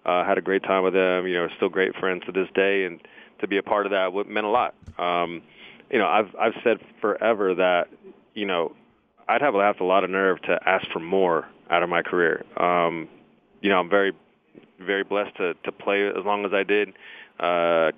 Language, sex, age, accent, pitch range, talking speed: English, male, 30-49, American, 85-100 Hz, 220 wpm